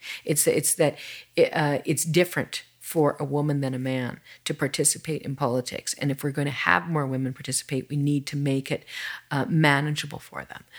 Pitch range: 135-165 Hz